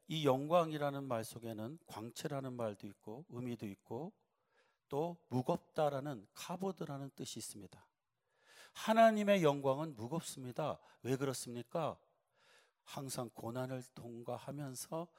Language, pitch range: Korean, 120-150 Hz